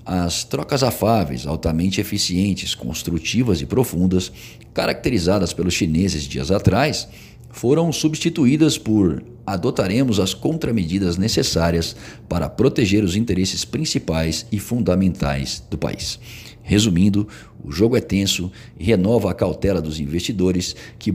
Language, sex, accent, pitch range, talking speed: Portuguese, male, Brazilian, 80-110 Hz, 115 wpm